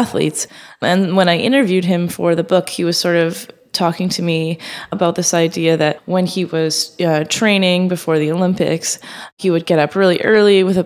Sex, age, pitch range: female, 20-39, 160-190 Hz